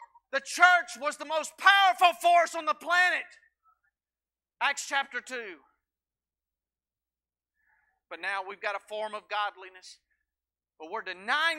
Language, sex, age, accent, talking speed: English, male, 40-59, American, 125 wpm